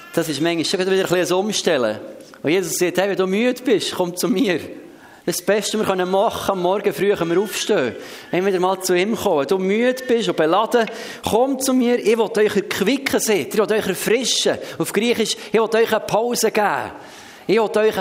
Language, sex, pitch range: German, male, 190-230 Hz